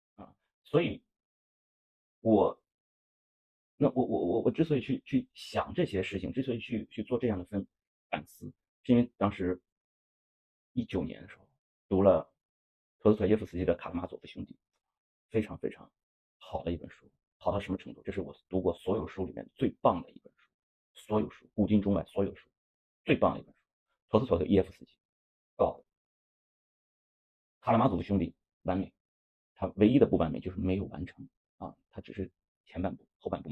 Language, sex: Chinese, male